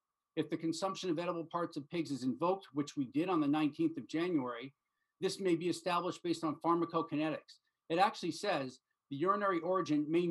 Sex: male